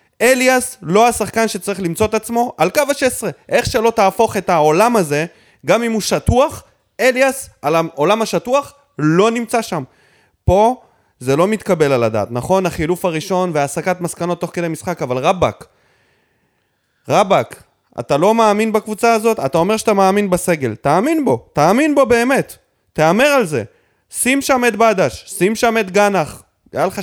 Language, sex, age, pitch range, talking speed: Hebrew, male, 30-49, 145-210 Hz, 160 wpm